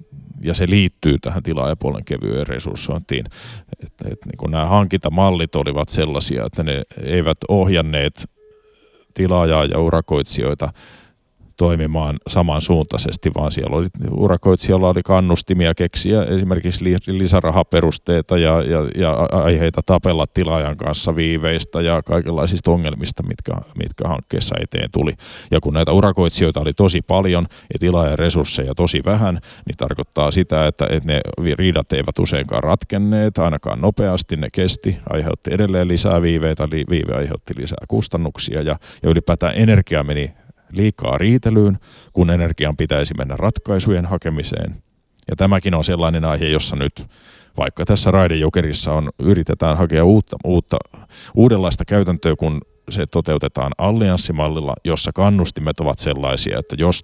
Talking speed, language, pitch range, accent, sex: 130 wpm, Finnish, 80-95 Hz, native, male